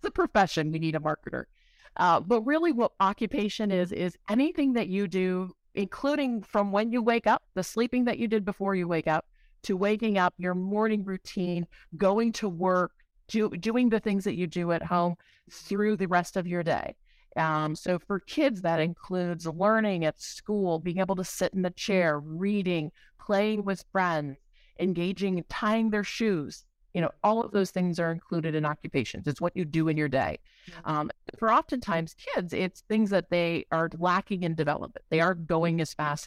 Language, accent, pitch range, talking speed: English, American, 160-205 Hz, 190 wpm